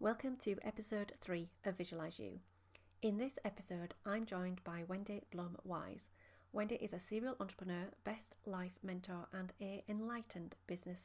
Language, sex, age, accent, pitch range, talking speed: English, female, 30-49, British, 170-210 Hz, 145 wpm